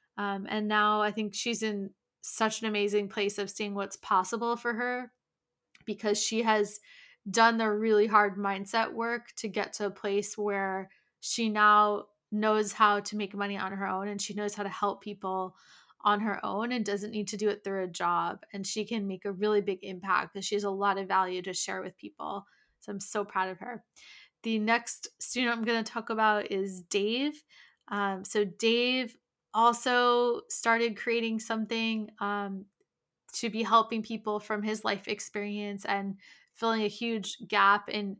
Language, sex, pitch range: English, female, 200-220 Hz